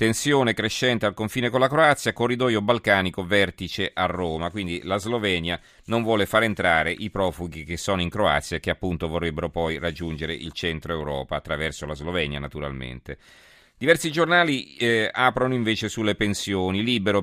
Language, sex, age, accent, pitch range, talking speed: Italian, male, 40-59, native, 90-115 Hz, 160 wpm